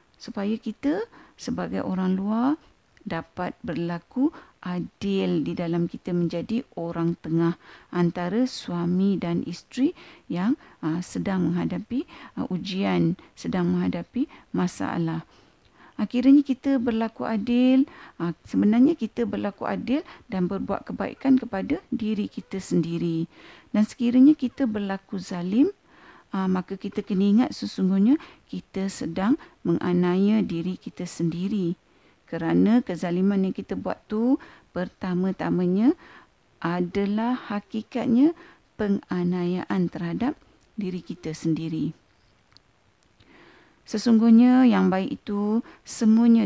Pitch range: 175-240 Hz